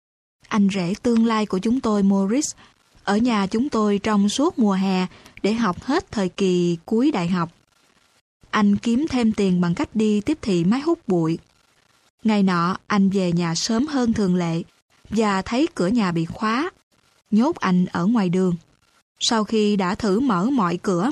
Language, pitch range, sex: Vietnamese, 195-235 Hz, female